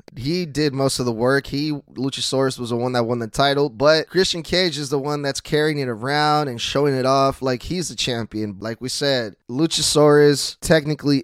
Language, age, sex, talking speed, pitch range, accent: English, 10-29, male, 205 wpm, 125-155 Hz, American